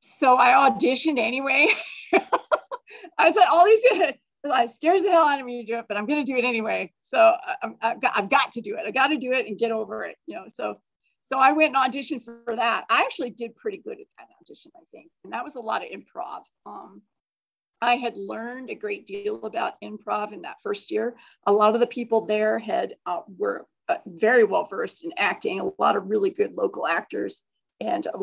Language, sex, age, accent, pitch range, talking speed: English, female, 40-59, American, 225-275 Hz, 225 wpm